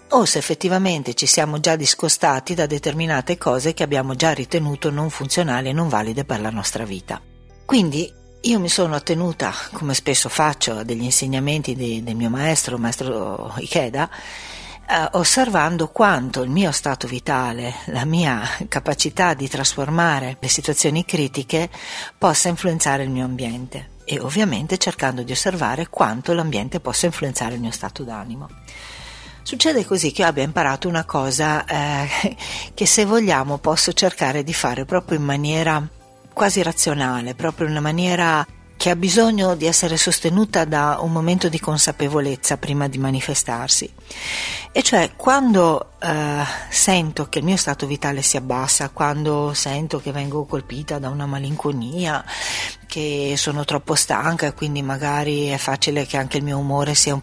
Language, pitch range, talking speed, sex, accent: Italian, 135-165 Hz, 155 wpm, female, native